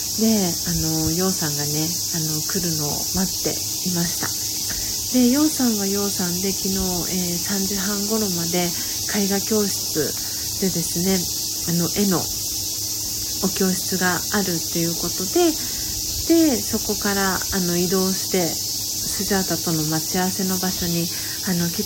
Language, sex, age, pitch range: Japanese, female, 40-59, 165-210 Hz